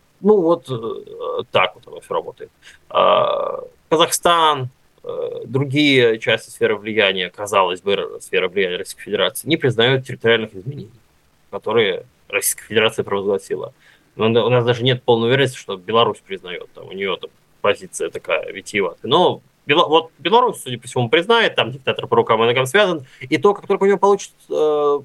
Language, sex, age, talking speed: Russian, male, 20-39, 165 wpm